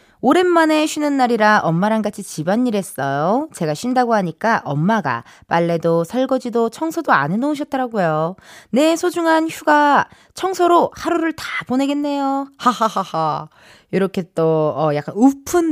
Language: Korean